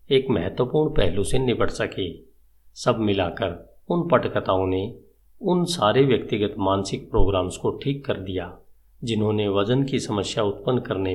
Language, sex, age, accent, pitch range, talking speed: Hindi, male, 50-69, native, 95-125 Hz, 140 wpm